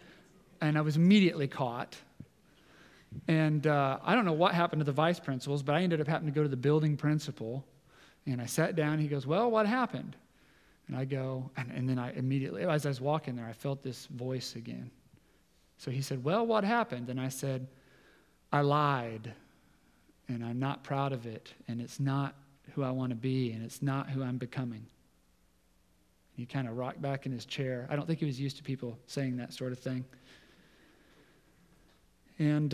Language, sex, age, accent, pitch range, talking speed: English, male, 40-59, American, 125-155 Hz, 200 wpm